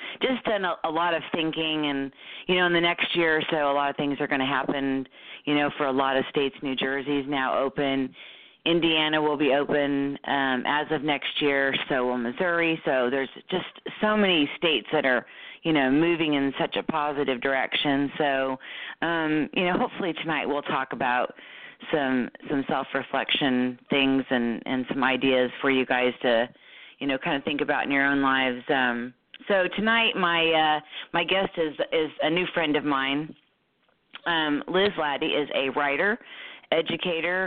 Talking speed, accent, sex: 185 wpm, American, female